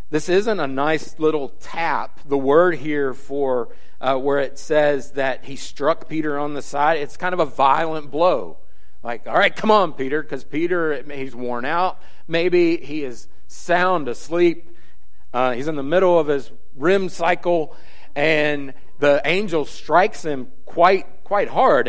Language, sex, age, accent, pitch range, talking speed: English, male, 40-59, American, 125-170 Hz, 165 wpm